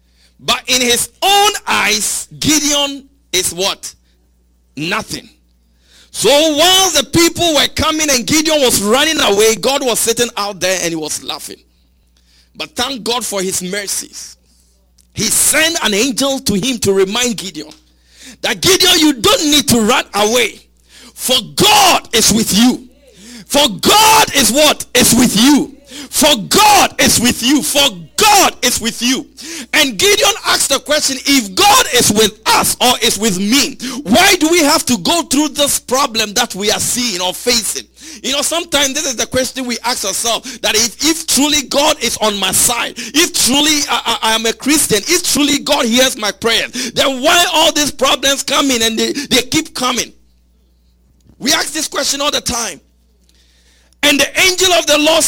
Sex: male